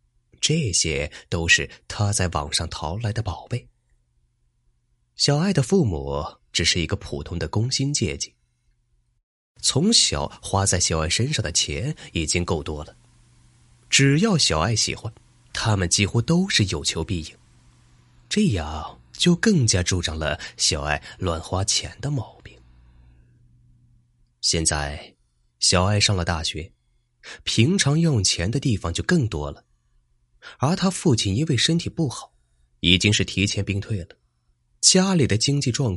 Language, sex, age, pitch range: Chinese, male, 20-39, 75-120 Hz